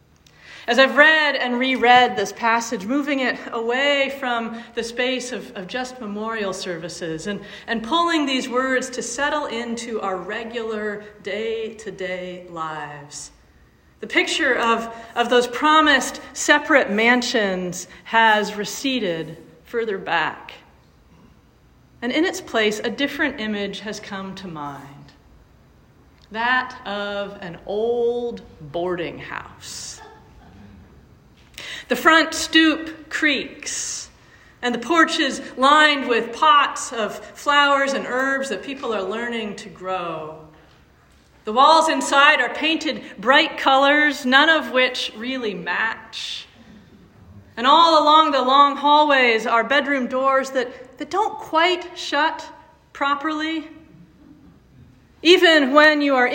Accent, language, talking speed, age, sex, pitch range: American, English, 120 wpm, 40-59, female, 210-290 Hz